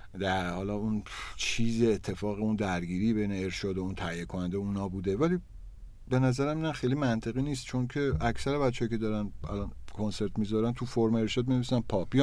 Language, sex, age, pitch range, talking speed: Persian, male, 50-69, 100-125 Hz, 180 wpm